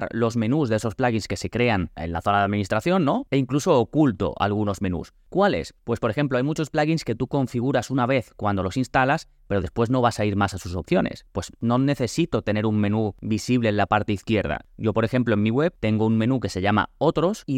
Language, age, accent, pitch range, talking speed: Spanish, 20-39, Spanish, 100-120 Hz, 235 wpm